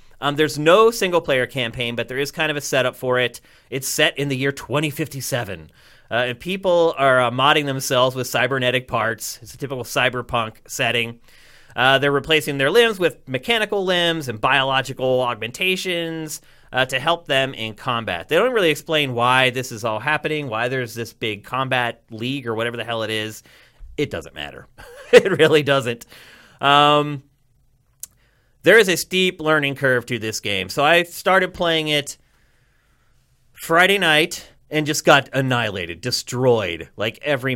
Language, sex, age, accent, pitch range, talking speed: English, male, 30-49, American, 120-155 Hz, 165 wpm